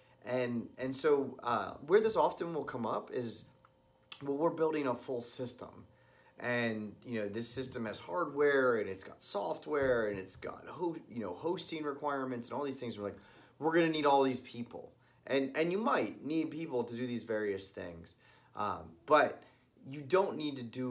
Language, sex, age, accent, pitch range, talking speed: English, male, 30-49, American, 110-155 Hz, 190 wpm